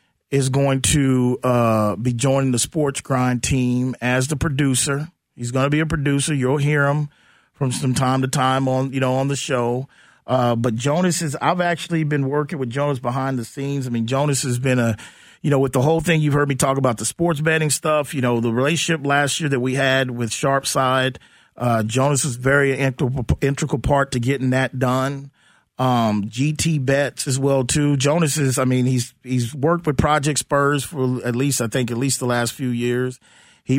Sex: male